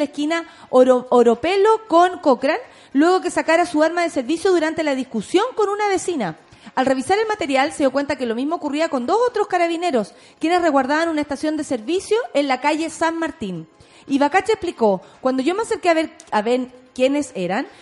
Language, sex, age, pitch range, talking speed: Spanish, female, 30-49, 260-360 Hz, 195 wpm